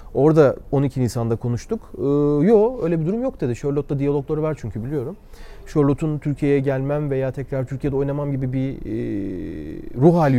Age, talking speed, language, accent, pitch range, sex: 40-59, 155 wpm, Turkish, native, 130-170 Hz, male